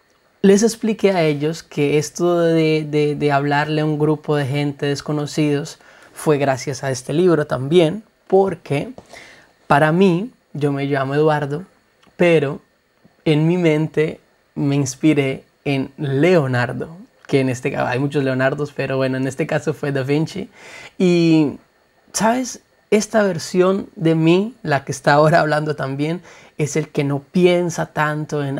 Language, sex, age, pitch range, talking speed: Spanish, male, 30-49, 145-165 Hz, 150 wpm